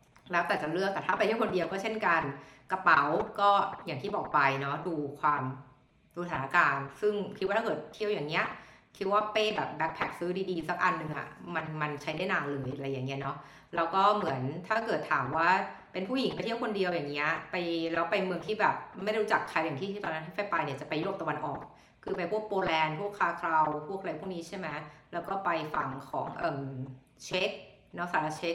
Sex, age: female, 60-79